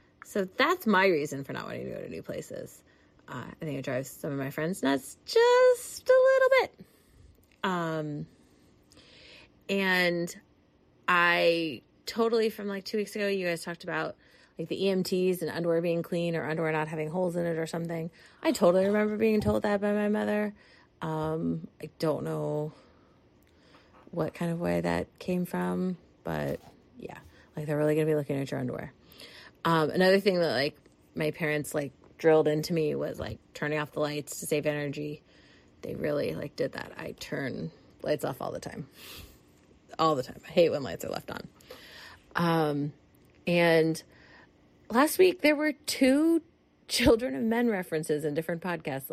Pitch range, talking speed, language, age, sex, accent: 150-205 Hz, 175 wpm, English, 30-49, female, American